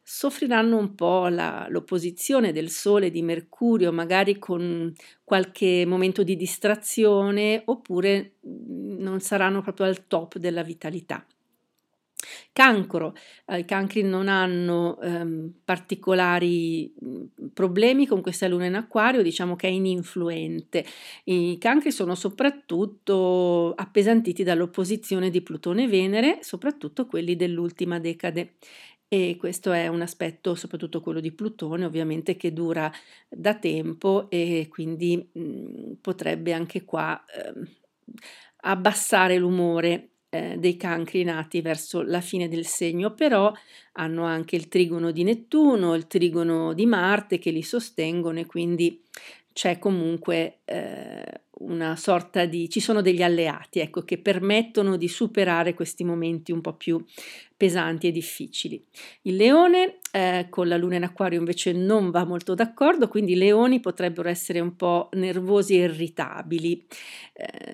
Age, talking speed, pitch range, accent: 50-69, 130 wpm, 170-200 Hz, native